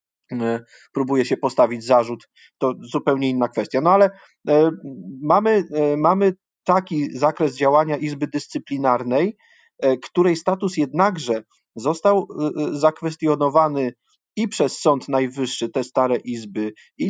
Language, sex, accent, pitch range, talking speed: Polish, male, native, 130-160 Hz, 105 wpm